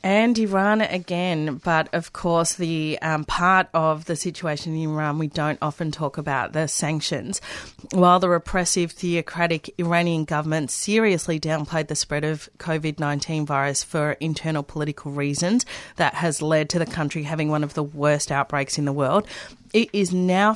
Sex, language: female, English